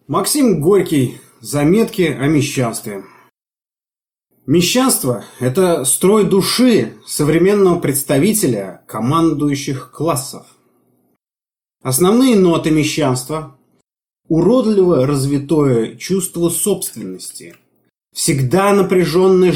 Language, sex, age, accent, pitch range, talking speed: Russian, male, 30-49, native, 140-185 Hz, 75 wpm